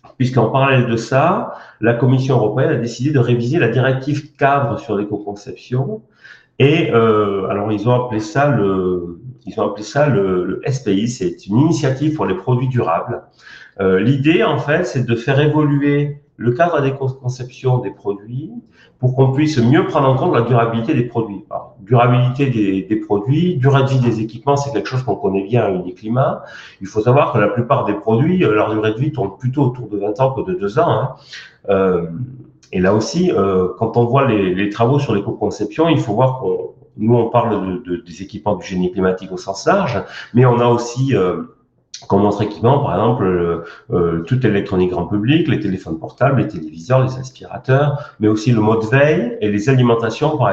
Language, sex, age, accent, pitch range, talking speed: French, male, 40-59, French, 105-135 Hz, 200 wpm